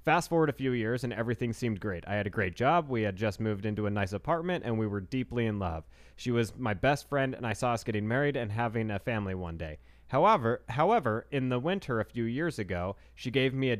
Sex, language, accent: male, English, American